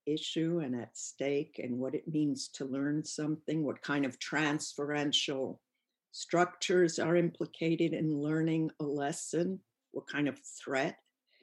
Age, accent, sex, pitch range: 60-79, American, female, 145-180 Hz